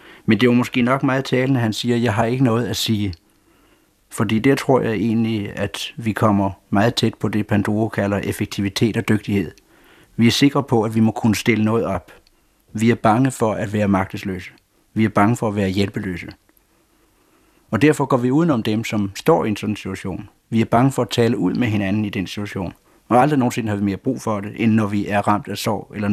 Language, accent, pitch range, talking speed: Danish, native, 100-120 Hz, 230 wpm